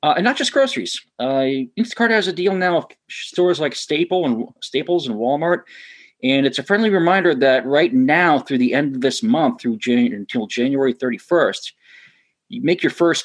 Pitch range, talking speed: 120-185 Hz, 195 wpm